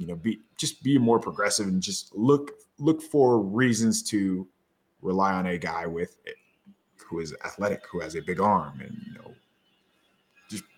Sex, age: male, 20-39